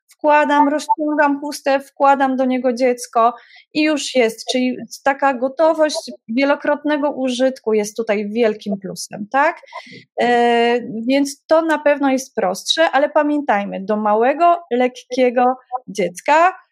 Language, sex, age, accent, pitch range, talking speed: Polish, female, 20-39, native, 230-285 Hz, 115 wpm